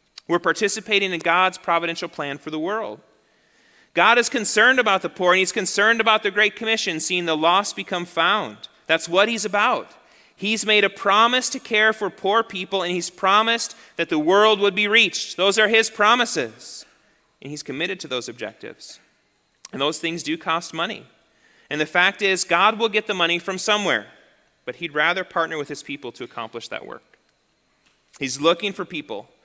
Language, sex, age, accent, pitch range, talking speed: English, male, 30-49, American, 155-210 Hz, 185 wpm